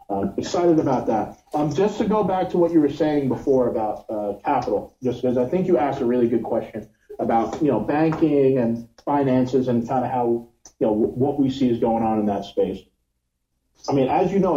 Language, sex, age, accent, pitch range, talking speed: English, male, 30-49, American, 110-140 Hz, 230 wpm